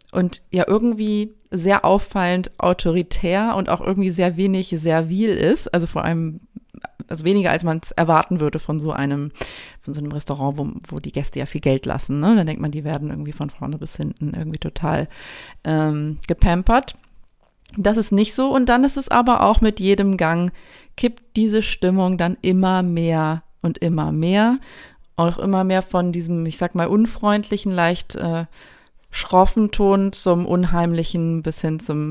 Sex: female